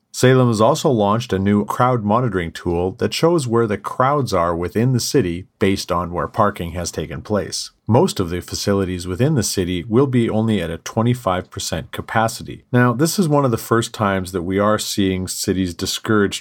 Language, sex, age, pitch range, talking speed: English, male, 40-59, 95-120 Hz, 195 wpm